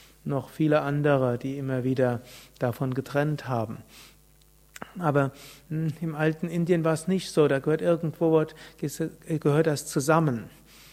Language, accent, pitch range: German, German, 135-160 Hz